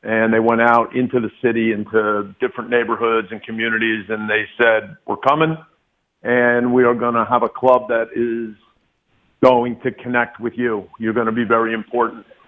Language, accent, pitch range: English, American, 115-130 Hz